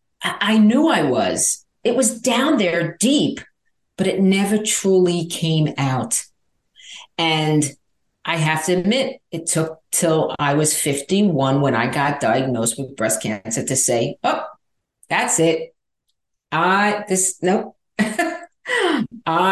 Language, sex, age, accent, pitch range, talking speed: English, female, 50-69, American, 140-190 Hz, 125 wpm